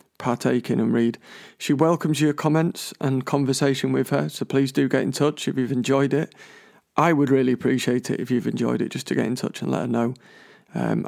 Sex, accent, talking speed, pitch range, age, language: male, British, 215 wpm, 120-145 Hz, 40-59, English